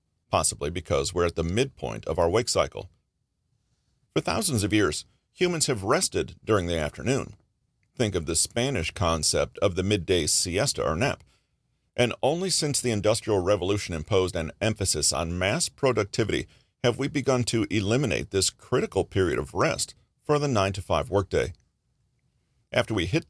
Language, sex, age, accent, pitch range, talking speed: English, male, 40-59, American, 90-120 Hz, 155 wpm